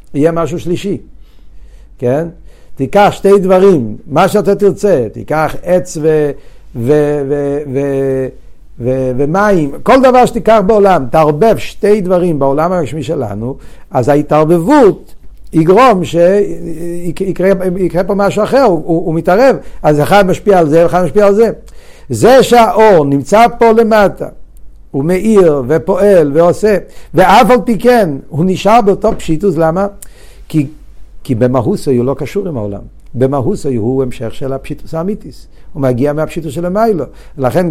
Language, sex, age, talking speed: Hebrew, male, 60-79, 135 wpm